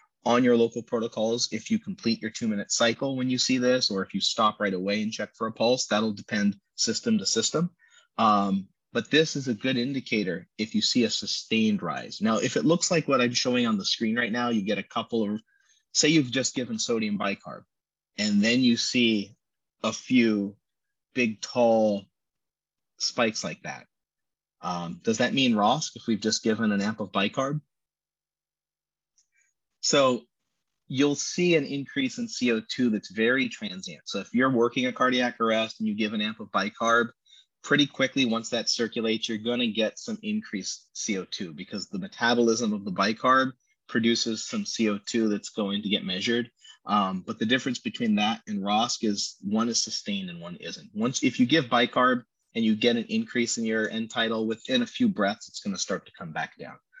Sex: male